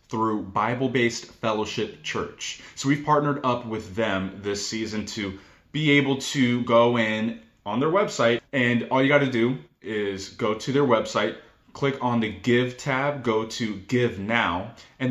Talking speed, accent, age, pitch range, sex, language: 165 wpm, American, 20-39, 110-145 Hz, male, English